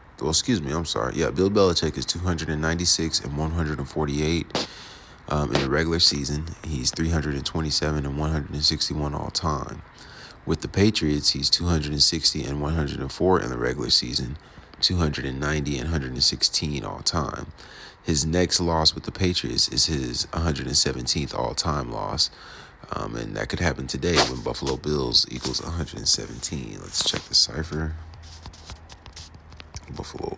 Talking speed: 170 wpm